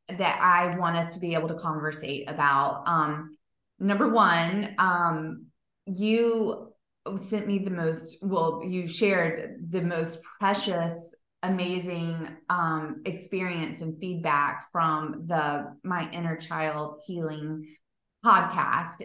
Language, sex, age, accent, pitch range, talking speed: English, female, 20-39, American, 160-190 Hz, 115 wpm